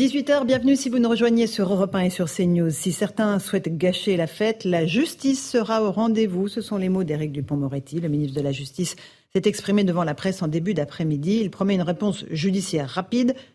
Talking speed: 215 wpm